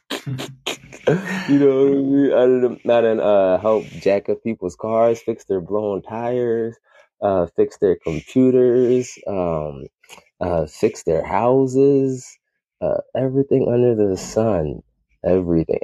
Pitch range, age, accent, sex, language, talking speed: 85-125 Hz, 20-39, American, male, English, 115 wpm